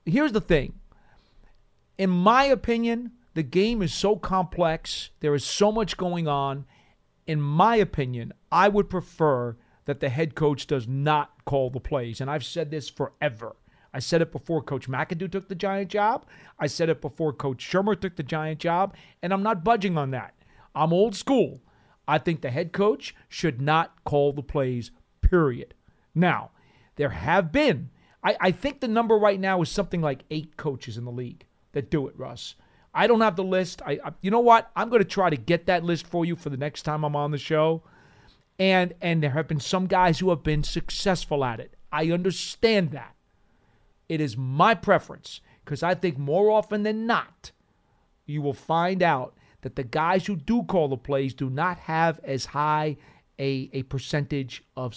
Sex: male